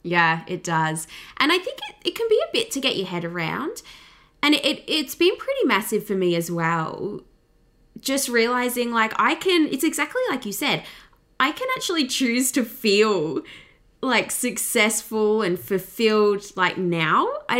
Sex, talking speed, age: female, 175 wpm, 20-39